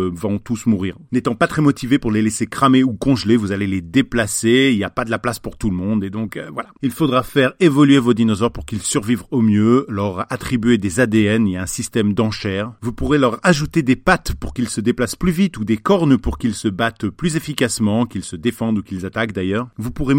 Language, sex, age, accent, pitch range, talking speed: French, male, 40-59, French, 105-140 Hz, 245 wpm